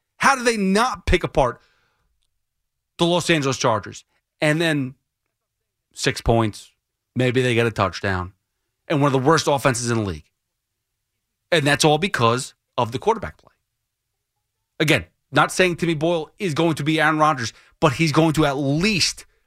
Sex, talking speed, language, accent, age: male, 165 wpm, English, American, 30-49